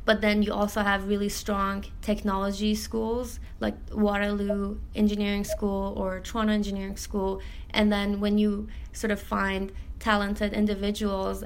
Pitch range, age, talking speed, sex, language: 200-220 Hz, 20-39, 135 wpm, female, English